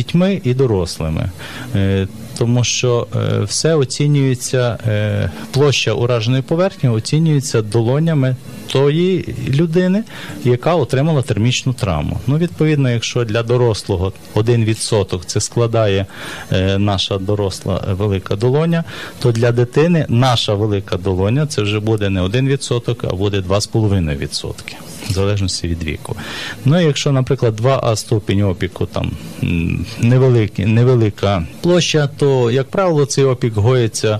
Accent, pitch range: native, 100-130 Hz